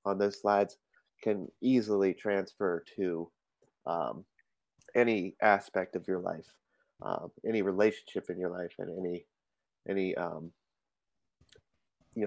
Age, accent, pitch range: 30-49, American, 95-110 Hz